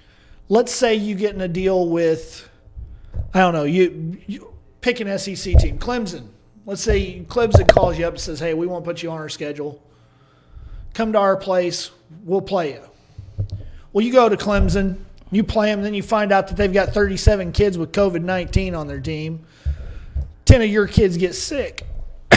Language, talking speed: English, 185 wpm